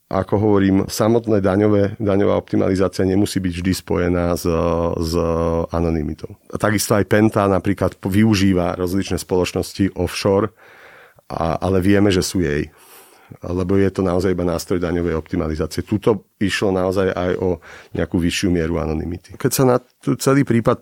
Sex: male